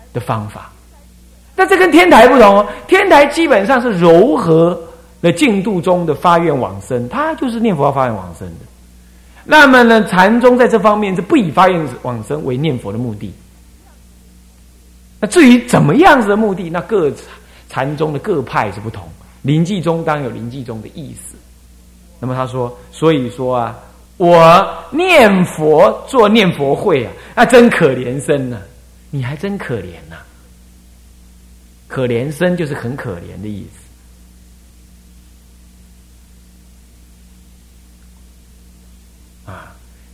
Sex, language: male, Chinese